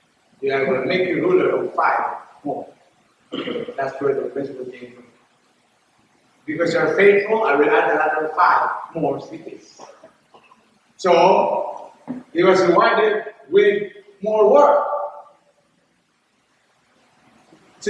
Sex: male